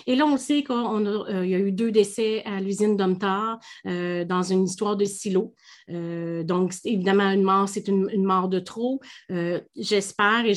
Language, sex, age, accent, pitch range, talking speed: French, female, 30-49, Canadian, 195-240 Hz, 200 wpm